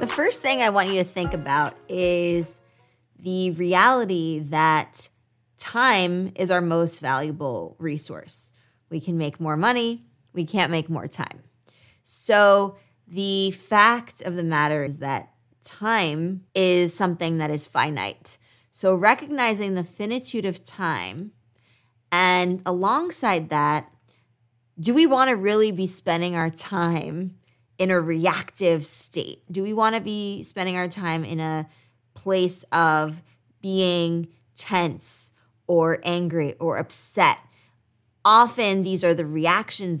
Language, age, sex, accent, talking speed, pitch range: English, 20-39, female, American, 130 wpm, 145-190 Hz